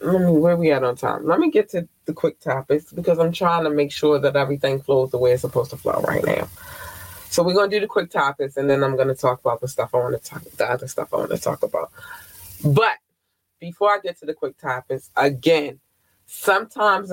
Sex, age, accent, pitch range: female, 20-39, American, 145-205 Hz